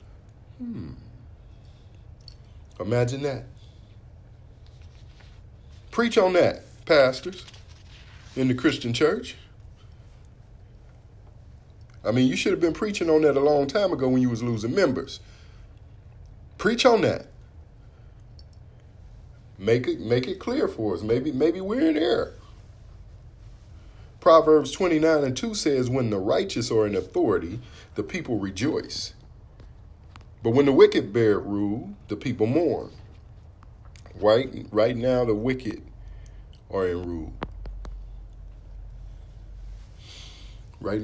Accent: American